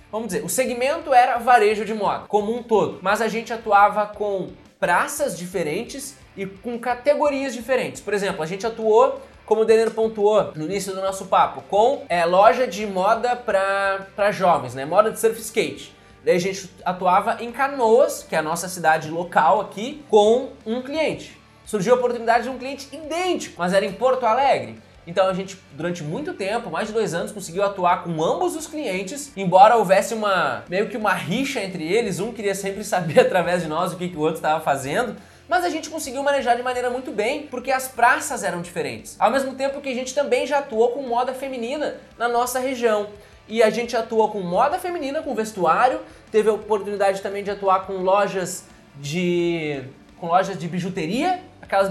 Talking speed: 195 wpm